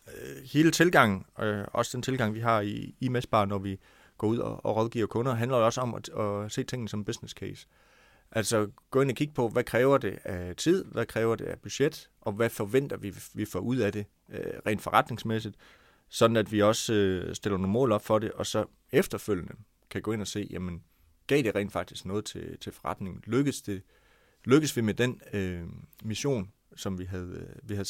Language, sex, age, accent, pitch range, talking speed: Danish, male, 30-49, native, 95-120 Hz, 195 wpm